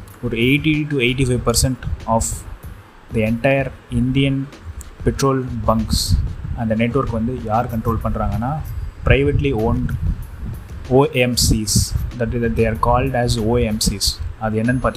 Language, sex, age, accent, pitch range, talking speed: Tamil, male, 20-39, native, 105-125 Hz, 150 wpm